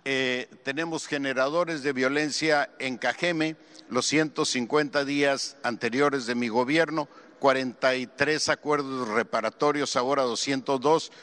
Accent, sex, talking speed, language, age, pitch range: Mexican, male, 100 wpm, Spanish, 50-69, 125-145 Hz